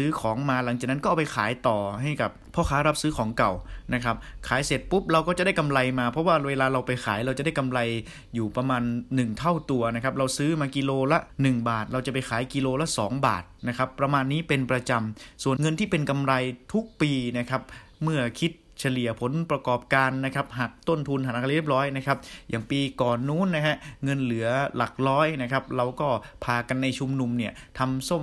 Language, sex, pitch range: Thai, male, 120-145 Hz